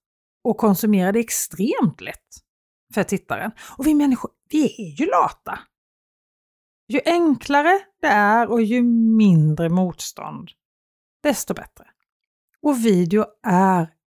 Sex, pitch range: female, 175-260 Hz